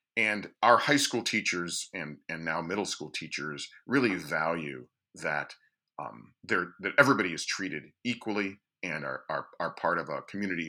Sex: male